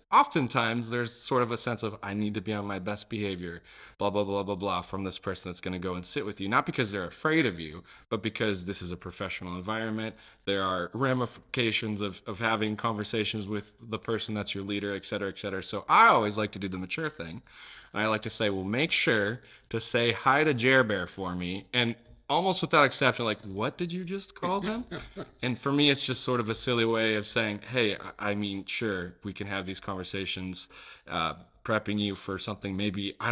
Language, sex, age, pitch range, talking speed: English, male, 20-39, 100-115 Hz, 225 wpm